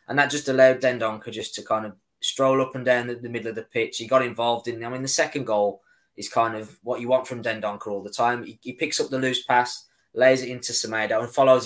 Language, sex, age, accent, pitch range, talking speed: English, male, 20-39, British, 115-130 Hz, 270 wpm